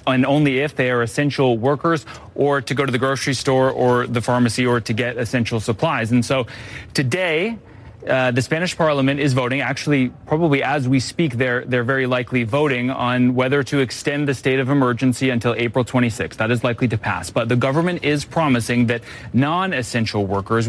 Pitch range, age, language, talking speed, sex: 120-145 Hz, 30-49, English, 190 wpm, male